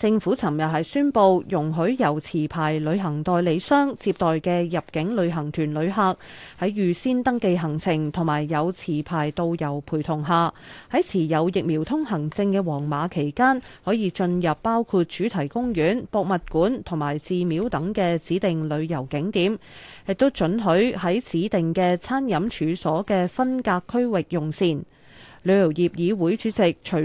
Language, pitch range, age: Chinese, 160-215 Hz, 30-49